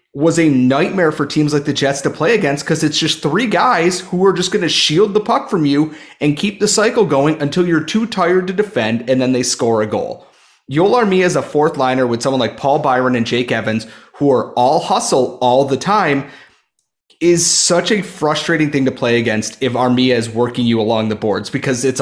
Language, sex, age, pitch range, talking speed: English, male, 30-49, 120-165 Hz, 225 wpm